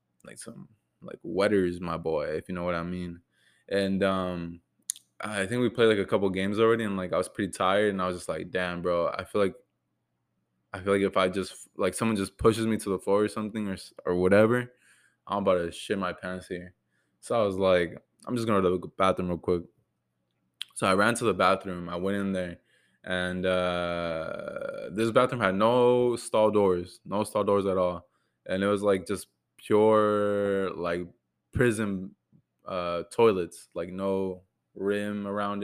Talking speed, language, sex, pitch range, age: 195 wpm, English, male, 90-105 Hz, 20-39